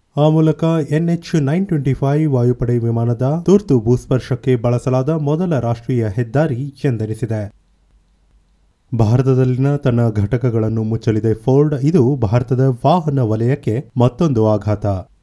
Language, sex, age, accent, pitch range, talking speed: Kannada, male, 30-49, native, 115-145 Hz, 100 wpm